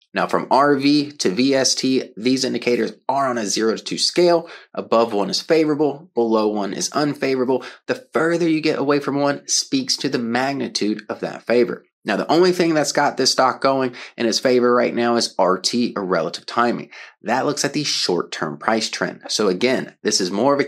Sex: male